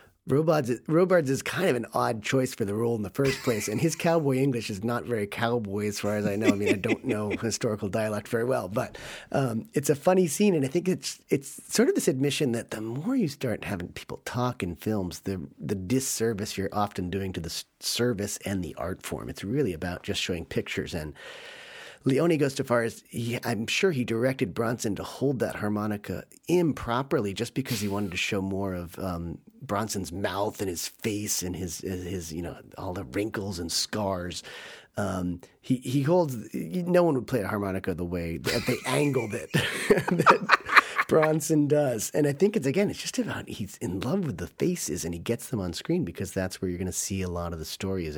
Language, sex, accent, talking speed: English, male, American, 220 wpm